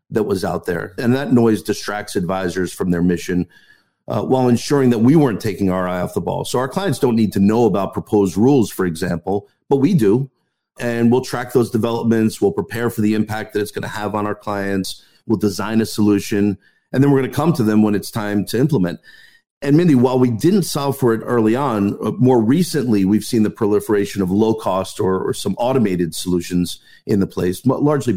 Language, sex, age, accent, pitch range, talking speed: English, male, 50-69, American, 95-125 Hz, 220 wpm